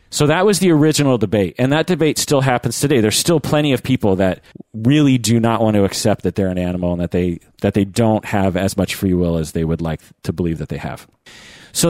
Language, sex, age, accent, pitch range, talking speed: English, male, 40-59, American, 100-135 Hz, 245 wpm